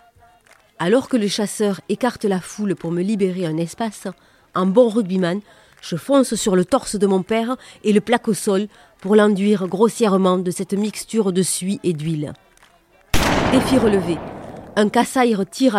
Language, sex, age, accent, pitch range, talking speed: French, female, 40-59, French, 185-230 Hz, 165 wpm